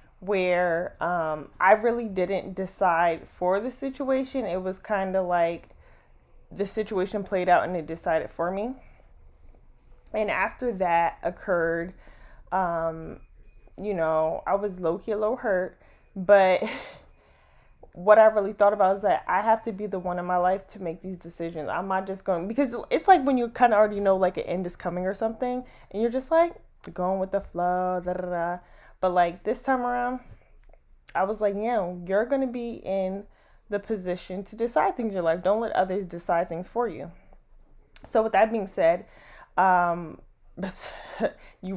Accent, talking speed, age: American, 175 wpm, 20-39